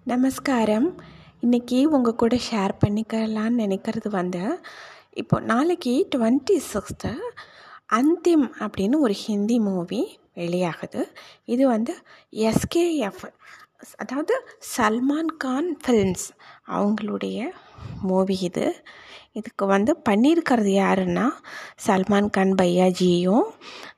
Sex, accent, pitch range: female, native, 195-290 Hz